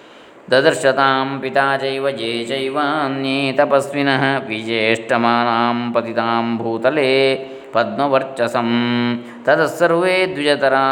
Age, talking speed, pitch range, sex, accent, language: 20-39, 55 wpm, 120-140 Hz, male, native, Kannada